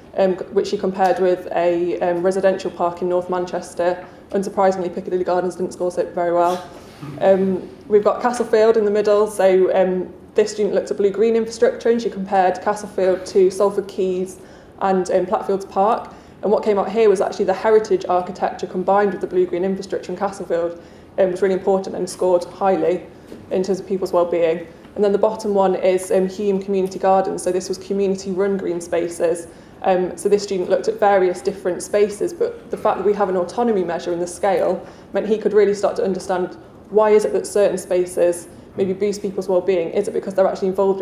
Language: English